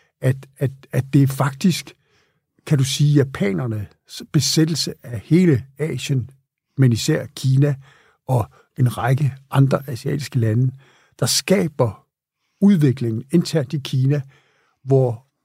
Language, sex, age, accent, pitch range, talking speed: Danish, male, 60-79, native, 130-155 Hz, 115 wpm